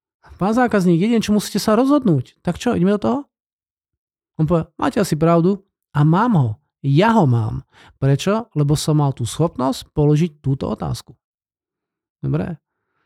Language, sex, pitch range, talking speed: Slovak, male, 145-210 Hz, 150 wpm